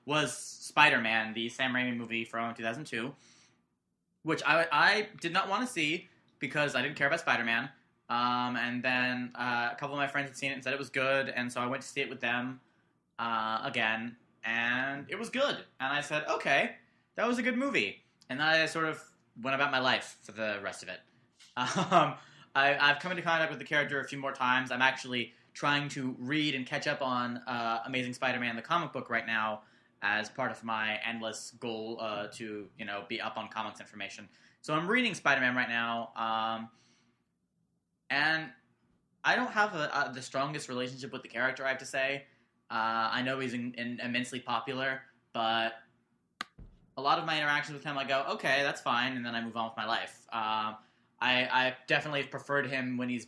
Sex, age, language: male, 20-39, English